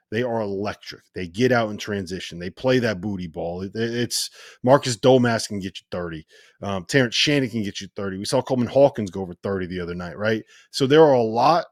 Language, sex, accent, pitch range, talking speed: English, male, American, 100-130 Hz, 225 wpm